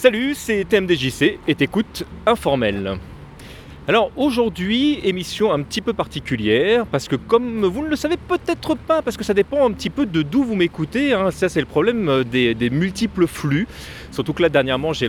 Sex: male